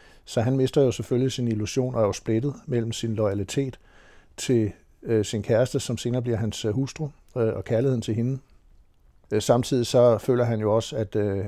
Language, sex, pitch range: Danish, male, 105-115 Hz